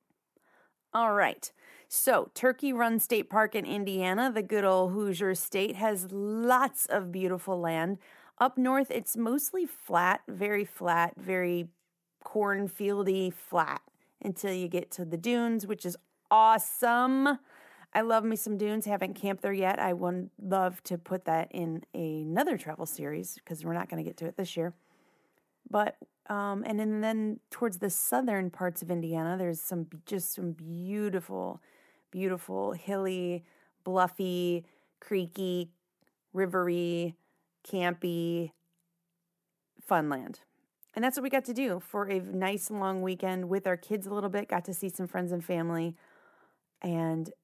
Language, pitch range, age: English, 175-210 Hz, 30-49